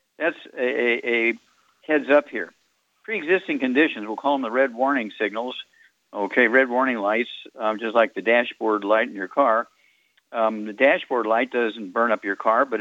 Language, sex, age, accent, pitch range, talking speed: English, male, 60-79, American, 115-155 Hz, 175 wpm